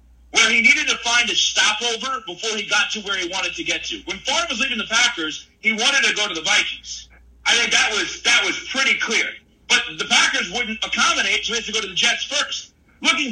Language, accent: English, American